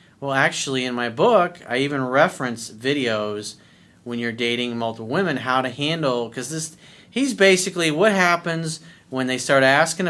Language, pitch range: English, 125-160 Hz